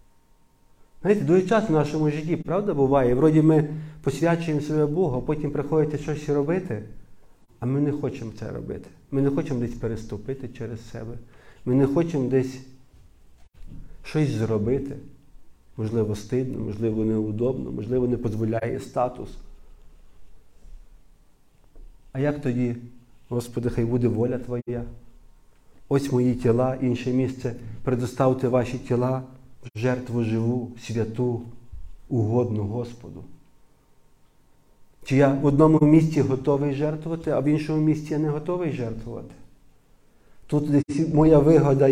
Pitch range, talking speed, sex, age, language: 120-145 Hz, 120 wpm, male, 40-59, Ukrainian